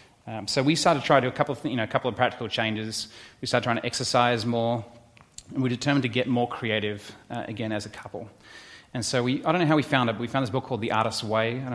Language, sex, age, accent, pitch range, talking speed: English, male, 30-49, Australian, 110-135 Hz, 295 wpm